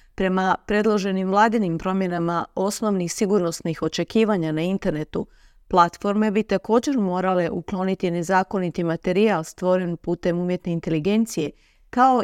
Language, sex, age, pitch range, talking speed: Croatian, female, 40-59, 175-210 Hz, 105 wpm